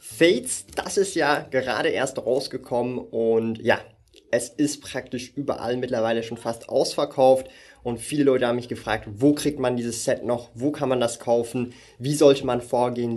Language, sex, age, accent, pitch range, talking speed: German, male, 20-39, German, 130-160 Hz, 175 wpm